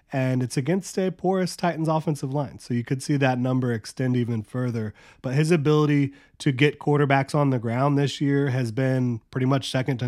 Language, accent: English, American